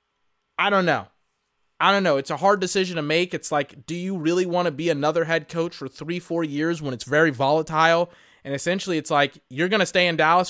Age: 20-39